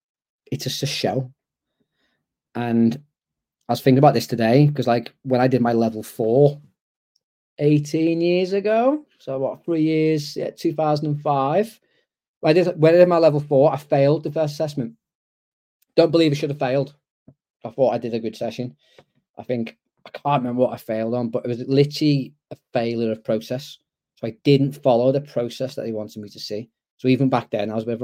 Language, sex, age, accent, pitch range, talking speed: English, male, 20-39, British, 120-145 Hz, 195 wpm